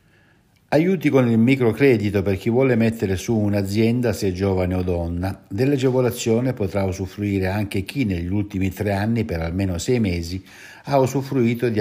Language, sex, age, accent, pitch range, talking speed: Italian, male, 60-79, native, 95-115 Hz, 160 wpm